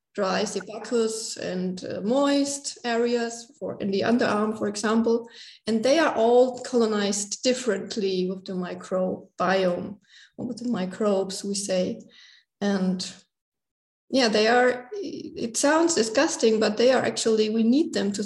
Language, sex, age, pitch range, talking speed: English, female, 20-39, 205-245 Hz, 140 wpm